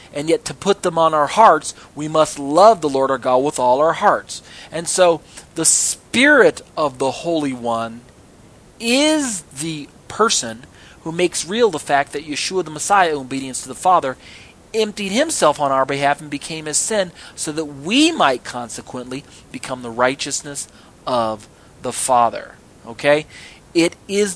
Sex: male